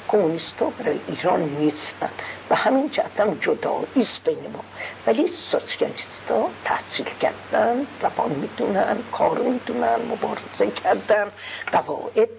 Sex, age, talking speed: female, 50-69, 105 wpm